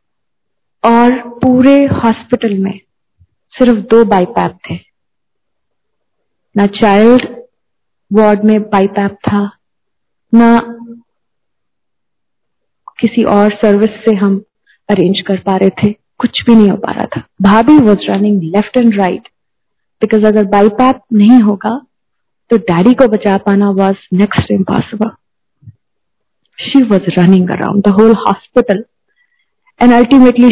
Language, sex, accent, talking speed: Hindi, female, native, 120 wpm